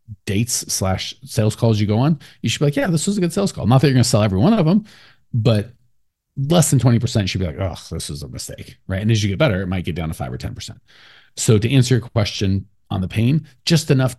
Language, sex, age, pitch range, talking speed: English, male, 40-59, 110-165 Hz, 280 wpm